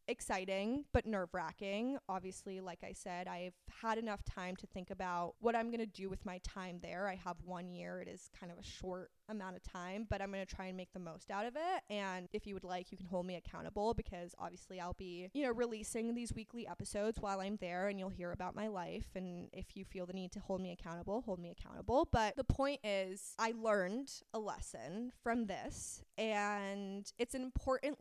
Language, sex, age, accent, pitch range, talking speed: English, female, 20-39, American, 185-235 Hz, 225 wpm